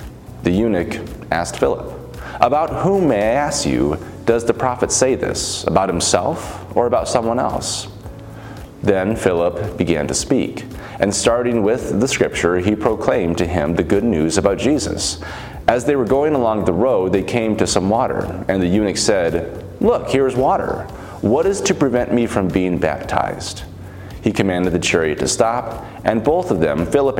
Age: 30-49